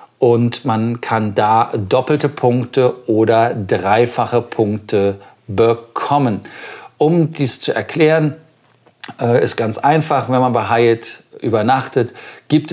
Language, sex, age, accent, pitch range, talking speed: German, male, 40-59, German, 115-140 Hz, 115 wpm